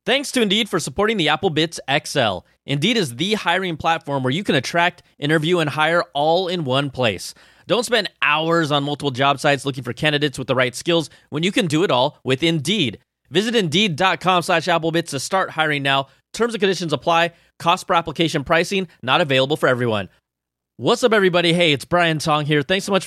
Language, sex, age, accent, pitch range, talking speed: English, male, 20-39, American, 135-175 Hz, 200 wpm